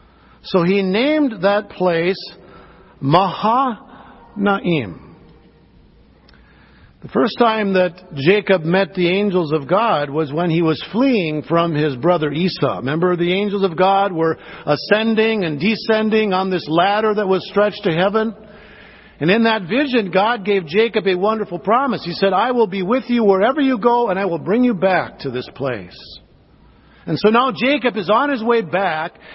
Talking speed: 165 wpm